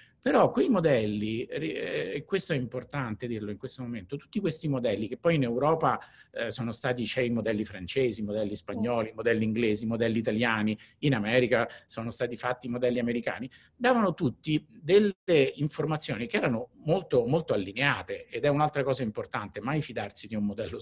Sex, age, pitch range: male, 50-69, 115-165 Hz